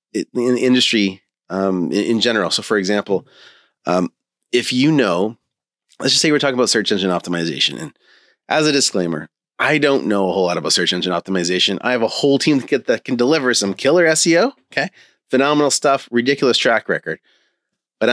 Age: 30-49